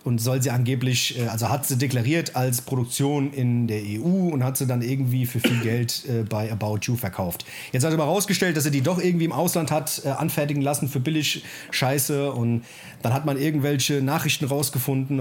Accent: German